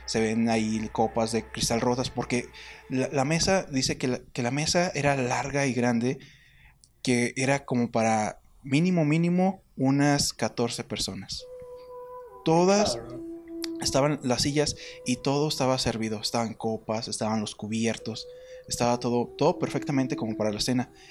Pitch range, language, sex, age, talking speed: 120-185 Hz, Spanish, male, 20-39, 145 wpm